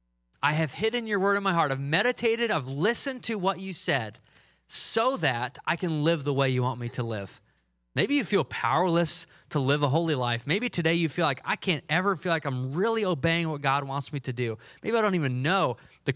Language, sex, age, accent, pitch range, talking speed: English, male, 30-49, American, 135-175 Hz, 230 wpm